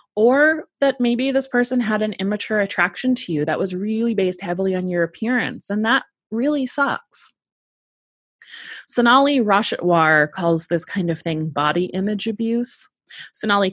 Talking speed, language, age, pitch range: 150 wpm, English, 20-39, 170-225 Hz